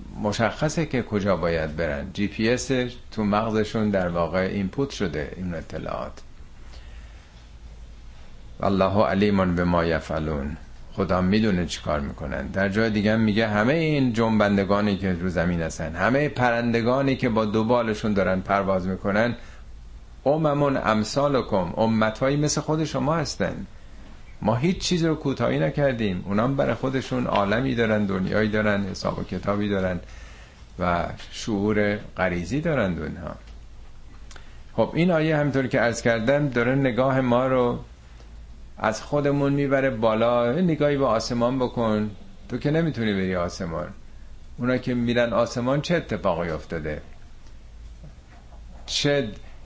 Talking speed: 125 wpm